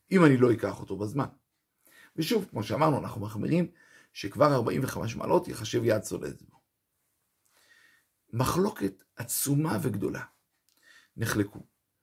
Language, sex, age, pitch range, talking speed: Hebrew, male, 50-69, 115-170 Hz, 110 wpm